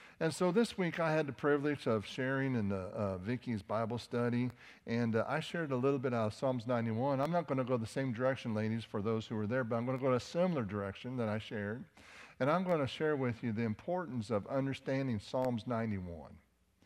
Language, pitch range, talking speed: English, 105-135 Hz, 230 wpm